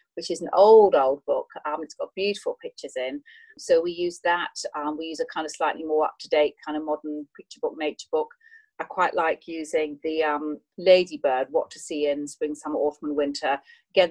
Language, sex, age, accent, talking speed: English, female, 40-59, British, 215 wpm